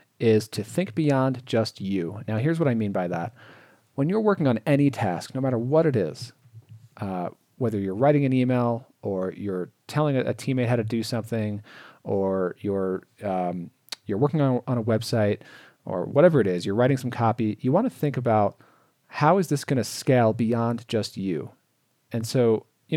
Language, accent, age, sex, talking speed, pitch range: English, American, 40-59, male, 190 wpm, 105-130 Hz